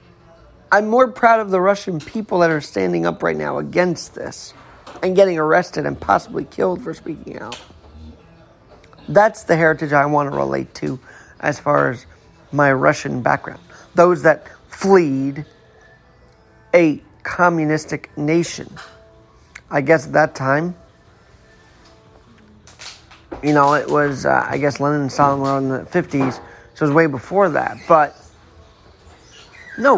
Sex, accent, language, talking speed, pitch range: male, American, English, 140 wpm, 130-170 Hz